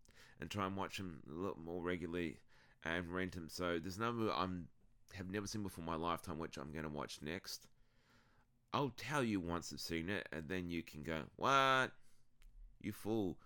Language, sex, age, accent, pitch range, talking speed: English, male, 30-49, Australian, 80-110 Hz, 195 wpm